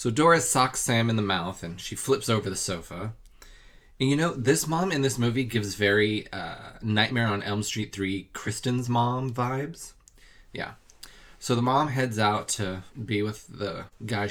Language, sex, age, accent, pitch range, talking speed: English, male, 20-39, American, 100-125 Hz, 180 wpm